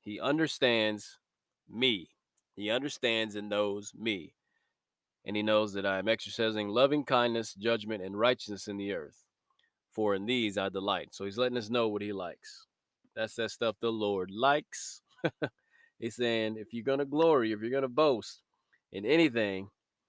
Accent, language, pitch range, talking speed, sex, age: American, English, 105-125 Hz, 165 wpm, male, 20-39